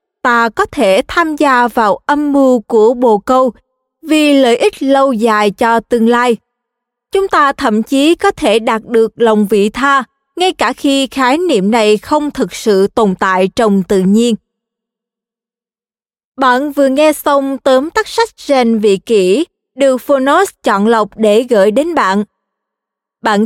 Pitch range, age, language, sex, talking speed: 220-290 Hz, 20-39, Vietnamese, female, 160 wpm